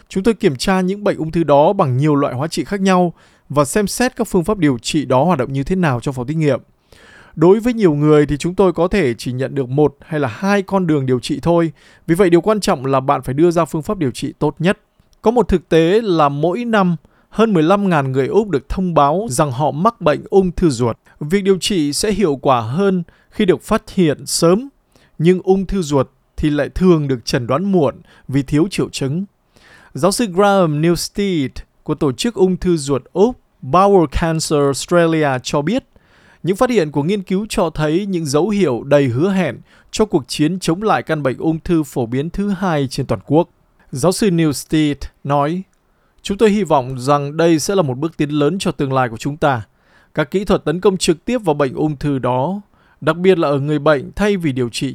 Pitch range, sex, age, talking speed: 145-190 Hz, male, 20-39, 230 wpm